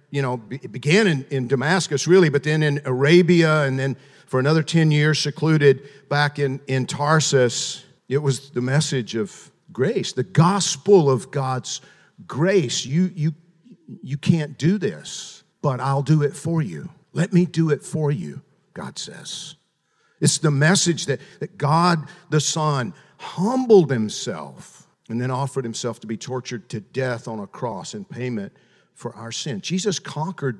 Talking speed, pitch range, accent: 165 wpm, 135-175 Hz, American